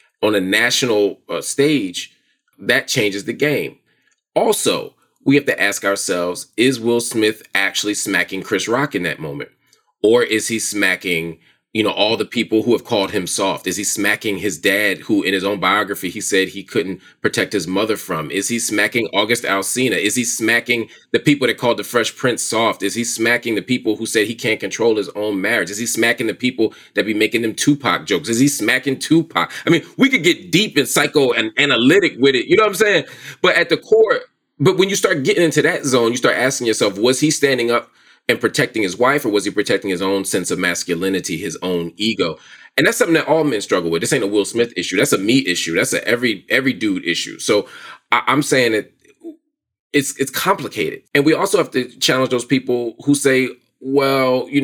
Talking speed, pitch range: 215 wpm, 110-160 Hz